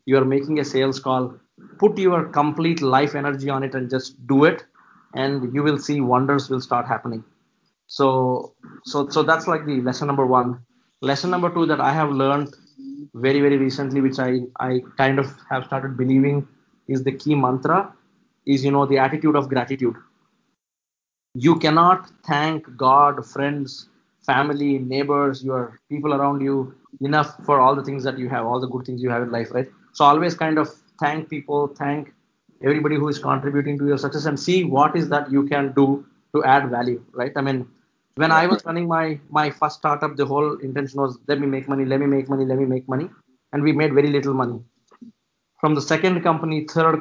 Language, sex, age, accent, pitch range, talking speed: English, male, 20-39, Indian, 130-150 Hz, 195 wpm